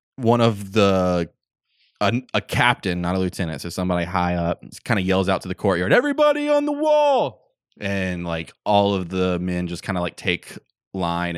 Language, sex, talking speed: English, male, 190 wpm